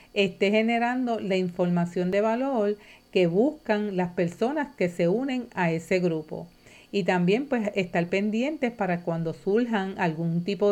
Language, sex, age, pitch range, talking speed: Spanish, female, 50-69, 185-235 Hz, 145 wpm